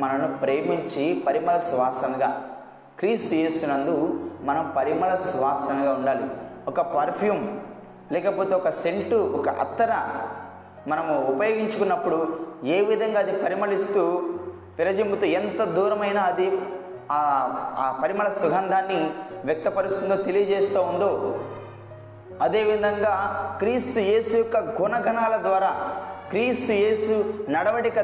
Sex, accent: male, native